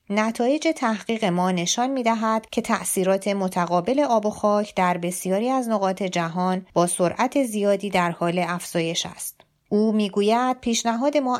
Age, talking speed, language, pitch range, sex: 30-49, 145 wpm, Persian, 180-230 Hz, female